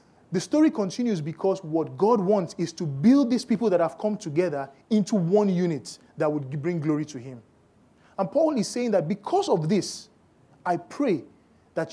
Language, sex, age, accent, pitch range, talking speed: English, male, 30-49, Nigerian, 140-190 Hz, 180 wpm